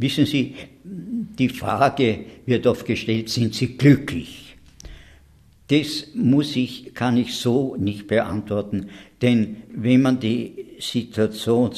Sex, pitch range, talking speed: male, 95-120 Hz, 105 wpm